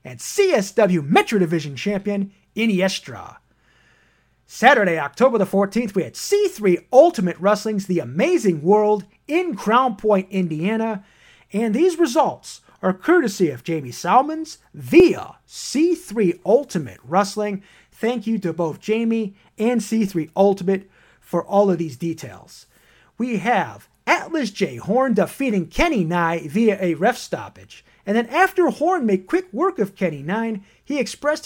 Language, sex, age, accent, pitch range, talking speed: English, male, 30-49, American, 175-240 Hz, 135 wpm